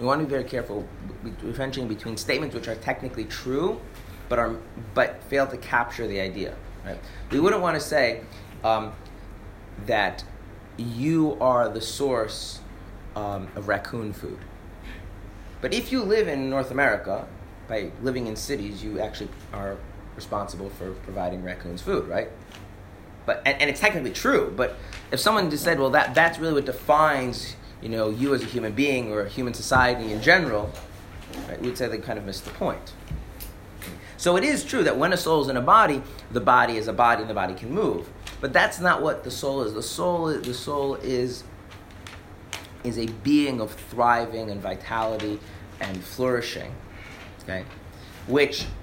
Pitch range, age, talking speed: 100-130 Hz, 30-49, 175 wpm